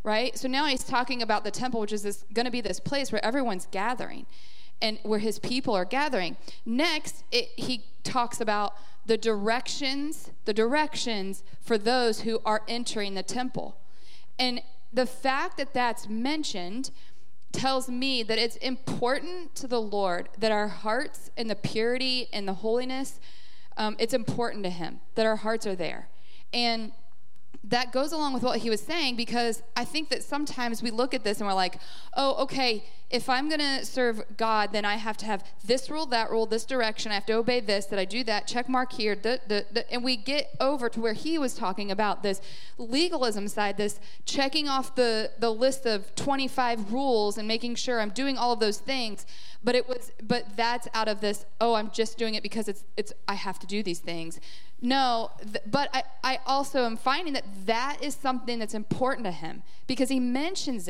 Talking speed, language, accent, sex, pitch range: 195 wpm, English, American, female, 210-260 Hz